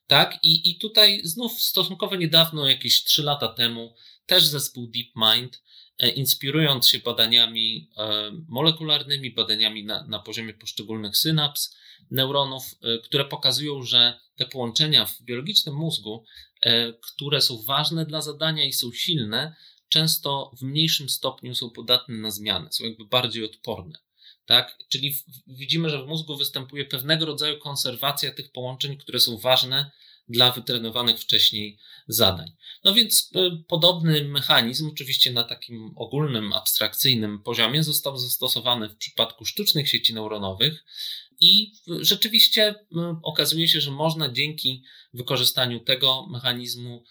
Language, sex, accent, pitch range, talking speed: Polish, male, native, 115-150 Hz, 125 wpm